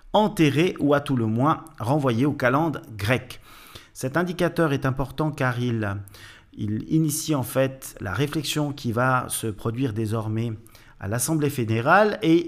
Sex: male